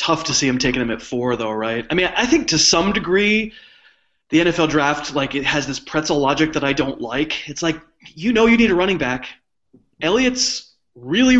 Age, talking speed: 20-39, 215 wpm